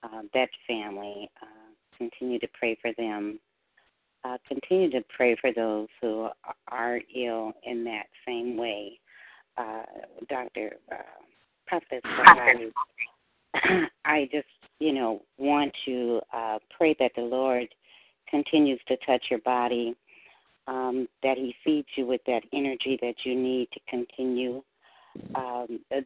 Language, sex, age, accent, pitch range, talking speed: English, female, 50-69, American, 120-130 Hz, 130 wpm